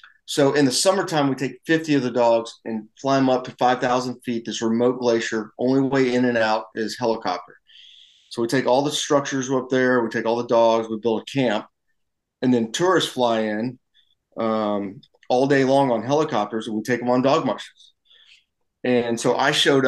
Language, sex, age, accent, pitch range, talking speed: English, male, 30-49, American, 110-130 Hz, 200 wpm